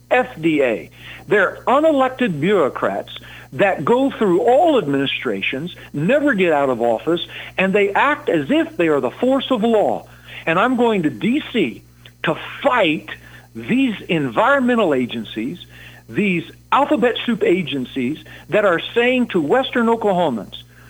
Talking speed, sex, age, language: 130 wpm, male, 60-79, English